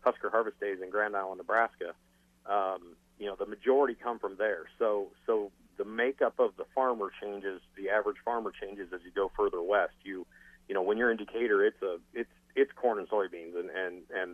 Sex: male